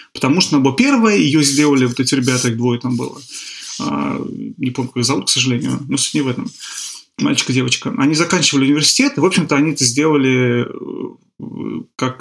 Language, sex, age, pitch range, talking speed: Russian, male, 30-49, 125-155 Hz, 170 wpm